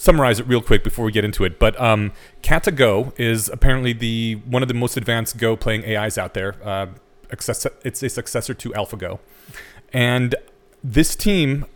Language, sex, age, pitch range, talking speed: English, male, 30-49, 110-140 Hz, 175 wpm